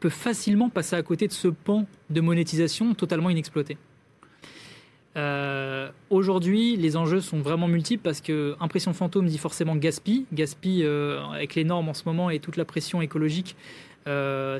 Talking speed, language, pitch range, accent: 165 wpm, French, 150-180 Hz, French